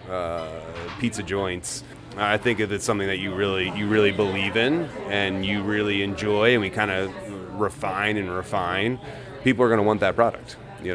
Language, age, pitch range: English, 30-49, 95-115 Hz